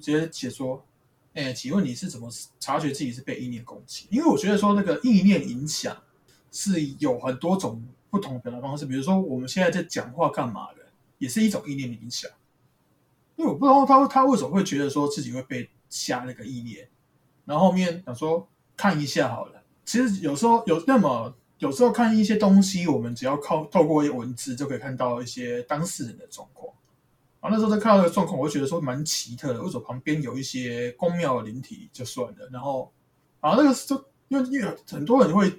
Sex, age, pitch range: male, 20-39, 130-190 Hz